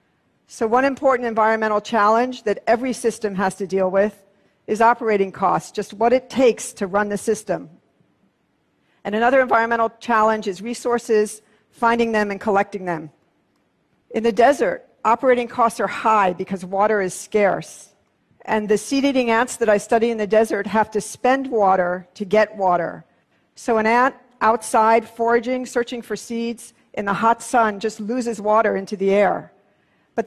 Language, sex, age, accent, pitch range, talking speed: English, female, 50-69, American, 205-240 Hz, 160 wpm